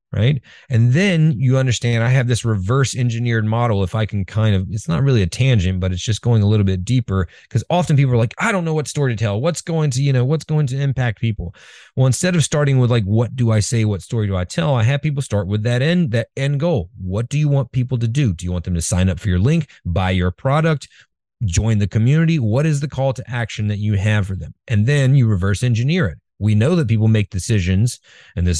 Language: English